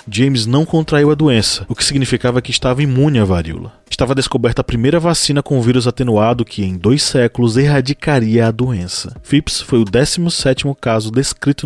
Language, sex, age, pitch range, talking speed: Portuguese, male, 20-39, 110-140 Hz, 180 wpm